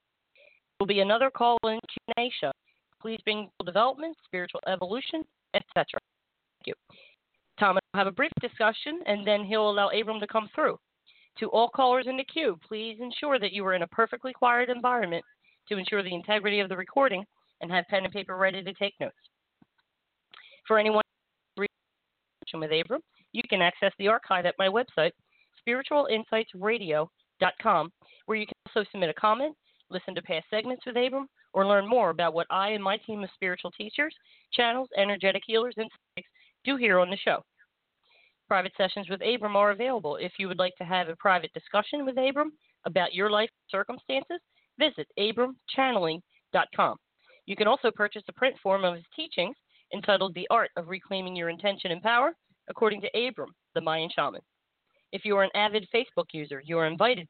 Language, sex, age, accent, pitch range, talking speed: English, female, 40-59, American, 185-245 Hz, 175 wpm